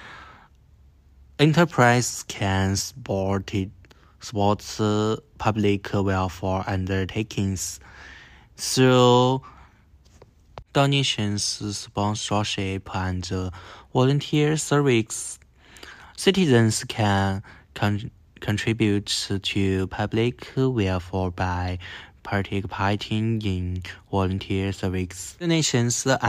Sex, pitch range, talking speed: male, 95-115 Hz, 70 wpm